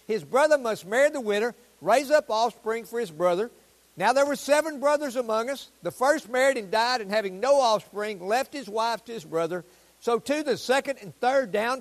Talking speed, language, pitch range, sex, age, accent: 210 wpm, English, 190-260 Hz, male, 60-79, American